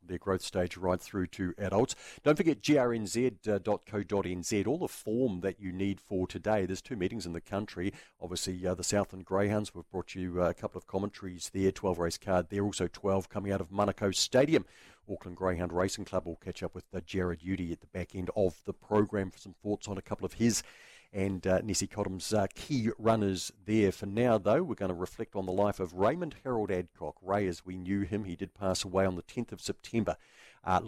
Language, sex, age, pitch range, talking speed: English, male, 50-69, 90-100 Hz, 220 wpm